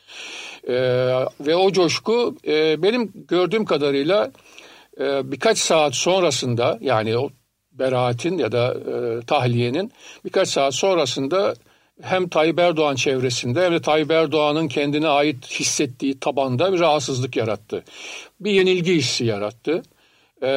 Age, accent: 50-69, native